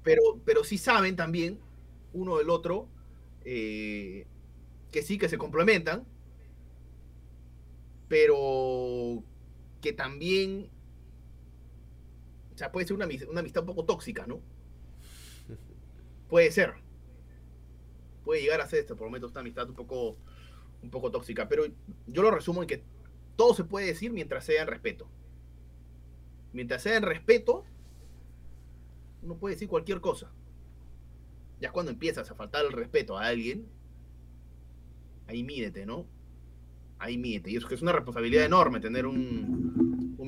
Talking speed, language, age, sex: 135 wpm, Spanish, 30-49, male